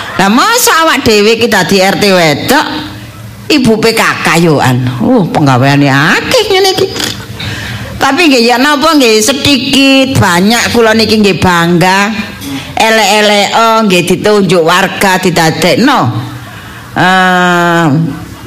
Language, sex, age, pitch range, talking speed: Indonesian, female, 50-69, 165-240 Hz, 115 wpm